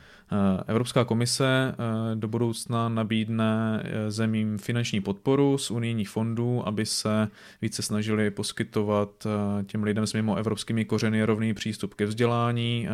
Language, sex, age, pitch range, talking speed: Czech, male, 20-39, 105-115 Hz, 120 wpm